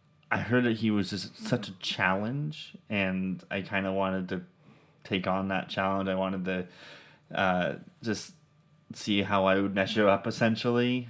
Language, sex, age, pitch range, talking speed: English, male, 20-39, 90-100 Hz, 170 wpm